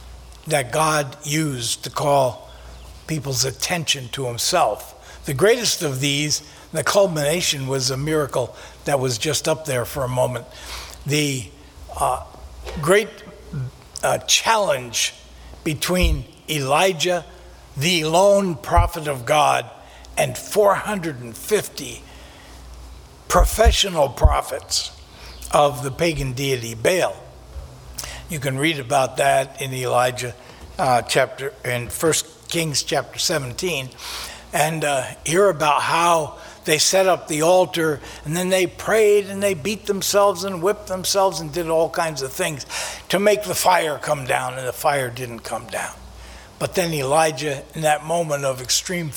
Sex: male